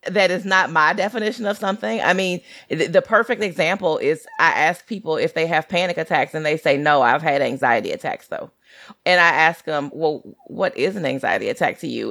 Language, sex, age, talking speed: English, female, 30-49, 215 wpm